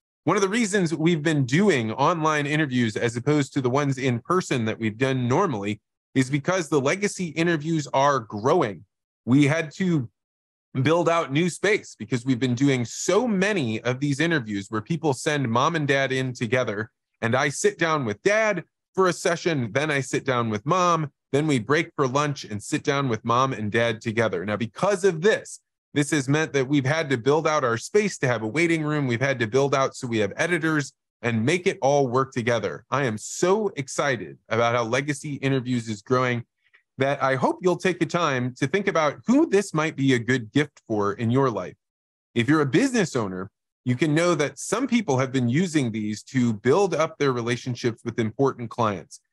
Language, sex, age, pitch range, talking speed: English, male, 20-39, 120-160 Hz, 205 wpm